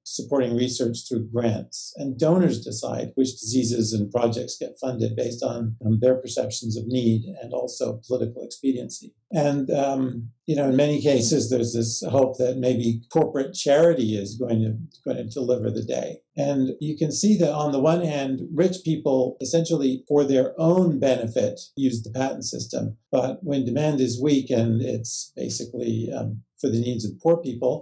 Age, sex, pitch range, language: 50-69, male, 115-140 Hz, English